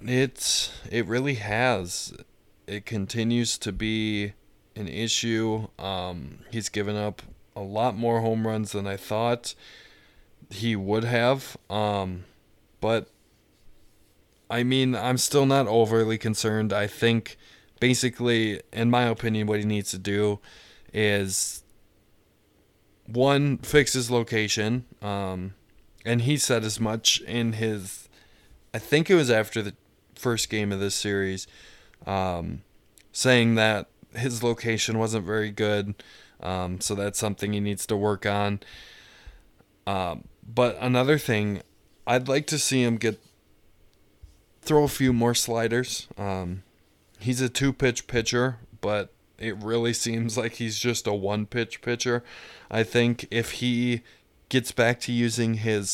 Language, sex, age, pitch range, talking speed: English, male, 20-39, 100-120 Hz, 135 wpm